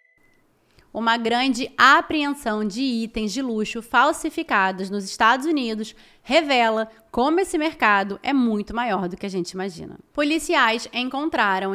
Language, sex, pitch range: Portuguese, female, 210-275 Hz